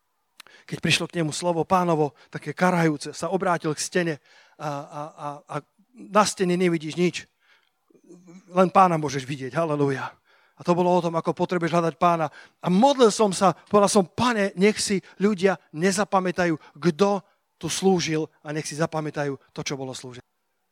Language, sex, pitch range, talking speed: Slovak, male, 155-195 Hz, 160 wpm